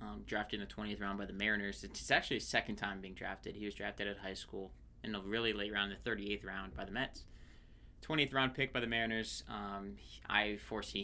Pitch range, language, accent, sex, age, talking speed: 100-115 Hz, English, American, male, 20-39, 230 wpm